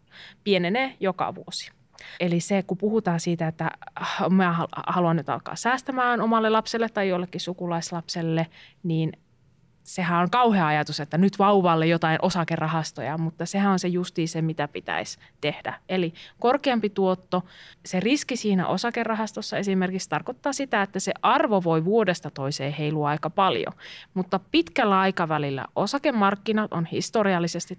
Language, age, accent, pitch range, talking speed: Finnish, 30-49, native, 165-220 Hz, 135 wpm